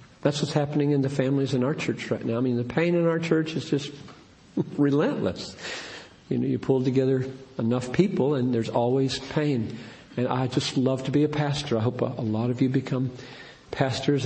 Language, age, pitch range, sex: English, 50-69, 120-145 Hz, male